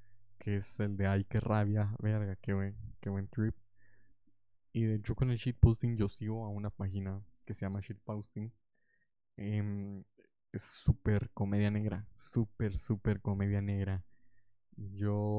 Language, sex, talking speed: Spanish, male, 145 wpm